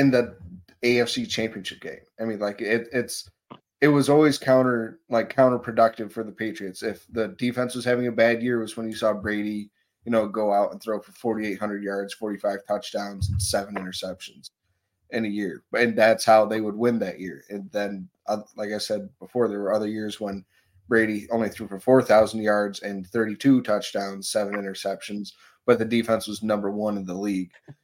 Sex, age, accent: male, 20-39, American